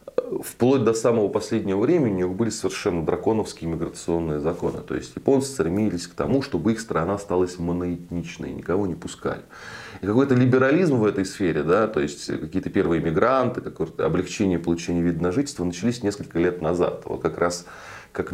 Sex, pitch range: male, 90-135 Hz